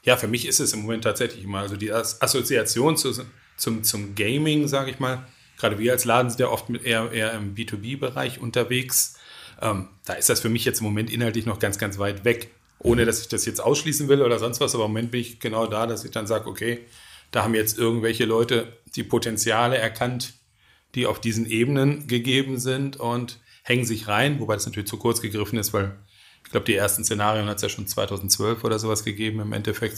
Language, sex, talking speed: German, male, 220 wpm